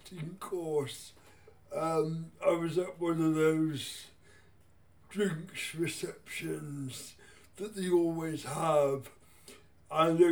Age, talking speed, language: 60-79, 95 wpm, English